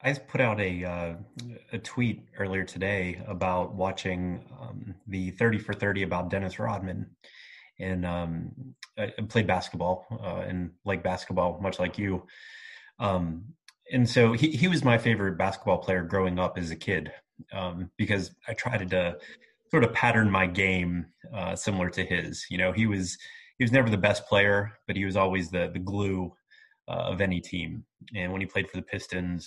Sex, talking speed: male, 180 wpm